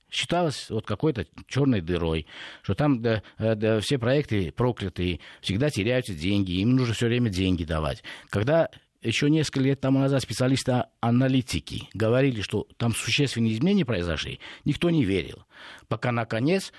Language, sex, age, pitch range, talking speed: Russian, male, 50-69, 100-145 Hz, 130 wpm